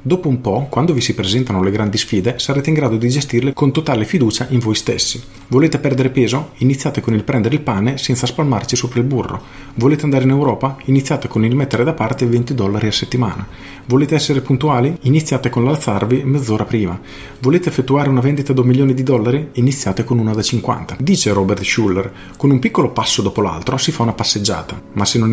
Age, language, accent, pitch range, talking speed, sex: 40-59, Italian, native, 105-130 Hz, 205 wpm, male